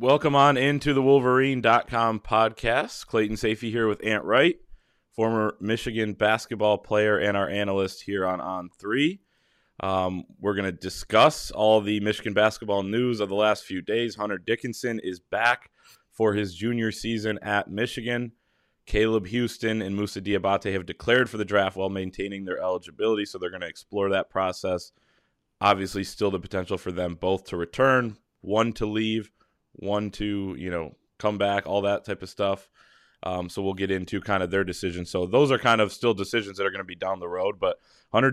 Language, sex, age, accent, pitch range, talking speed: English, male, 20-39, American, 95-115 Hz, 185 wpm